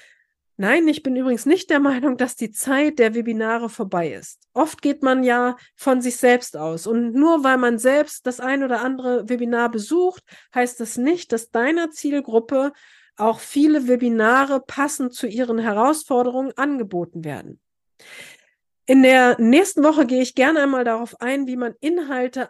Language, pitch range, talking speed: German, 225-275 Hz, 165 wpm